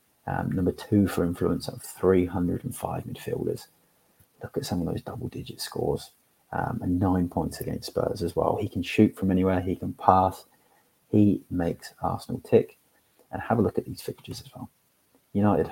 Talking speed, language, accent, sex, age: 170 wpm, English, British, male, 30-49